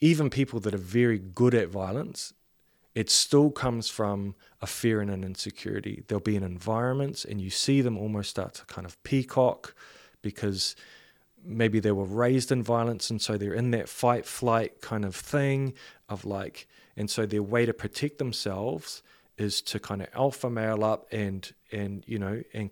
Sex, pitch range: male, 100-120 Hz